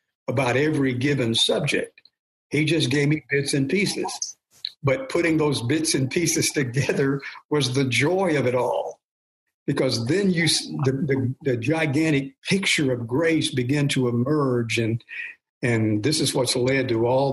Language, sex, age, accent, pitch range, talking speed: English, male, 60-79, American, 125-155 Hz, 150 wpm